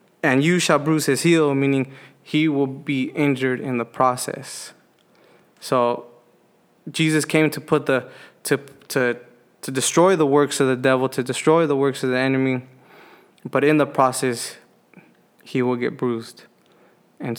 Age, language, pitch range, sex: 20-39, English, 130-155 Hz, male